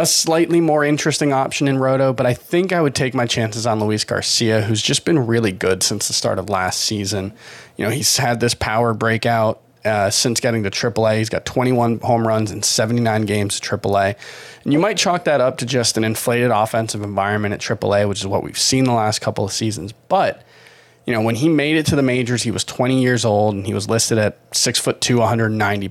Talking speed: 235 wpm